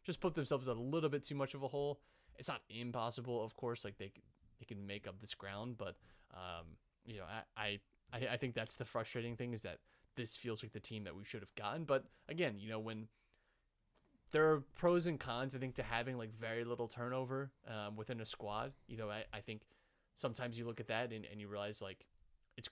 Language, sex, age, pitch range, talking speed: English, male, 20-39, 100-125 Hz, 225 wpm